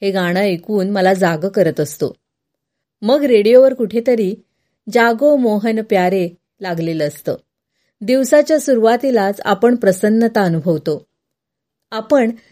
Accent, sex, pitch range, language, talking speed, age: native, female, 185-245 Hz, Marathi, 100 wpm, 30-49